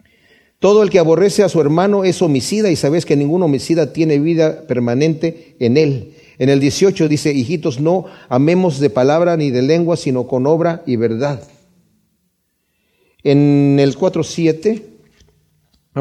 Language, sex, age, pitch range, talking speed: Spanish, male, 40-59, 135-180 Hz, 145 wpm